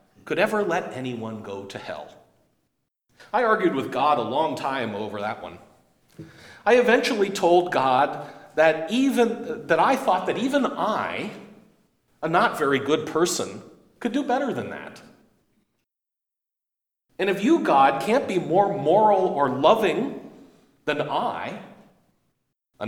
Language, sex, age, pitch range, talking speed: English, male, 40-59, 140-210 Hz, 135 wpm